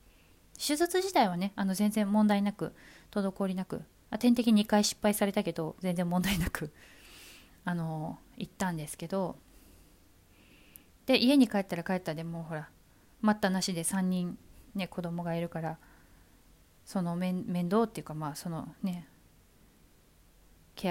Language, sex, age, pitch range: Japanese, female, 20-39, 150-195 Hz